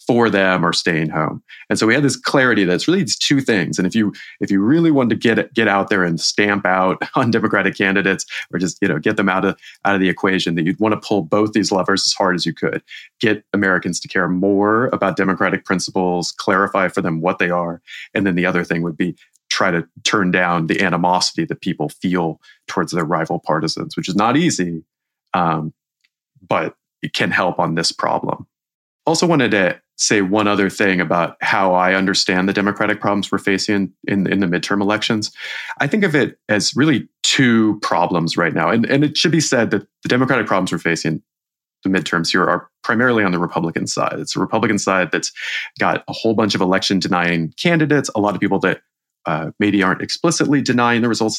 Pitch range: 90-110 Hz